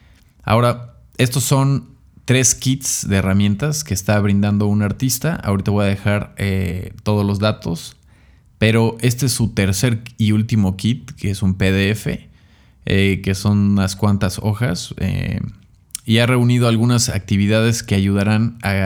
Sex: male